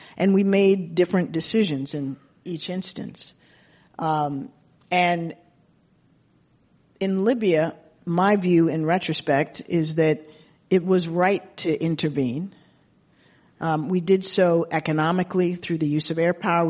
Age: 50-69